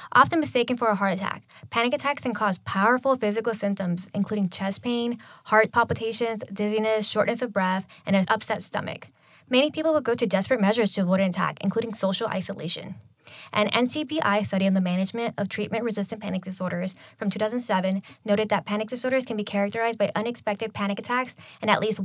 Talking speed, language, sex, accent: 180 wpm, English, female, American